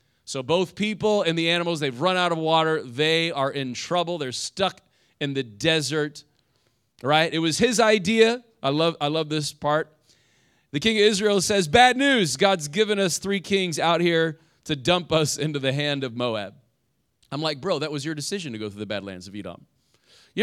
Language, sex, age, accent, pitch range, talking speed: English, male, 30-49, American, 145-200 Hz, 205 wpm